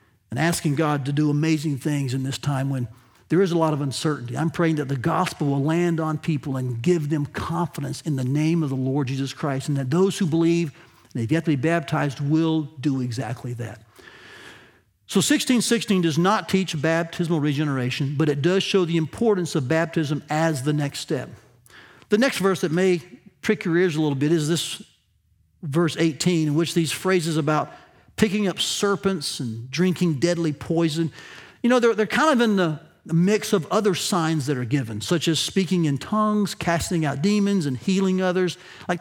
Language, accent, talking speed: English, American, 195 wpm